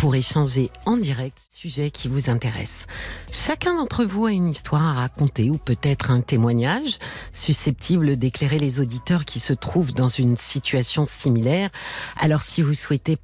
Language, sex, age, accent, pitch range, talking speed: French, female, 50-69, French, 125-170 Hz, 165 wpm